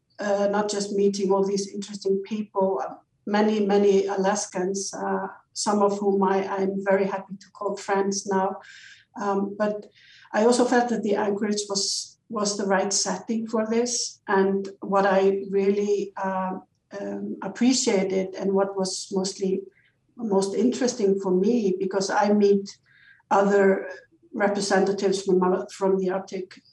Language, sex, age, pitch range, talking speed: English, female, 60-79, 190-205 Hz, 135 wpm